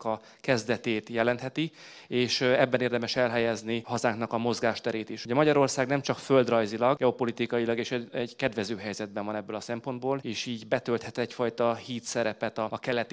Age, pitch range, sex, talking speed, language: 30-49, 115-130 Hz, male, 155 wpm, Hungarian